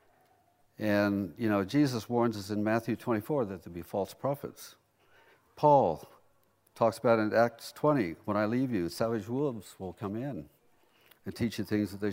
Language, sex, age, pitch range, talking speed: English, male, 60-79, 105-130 Hz, 180 wpm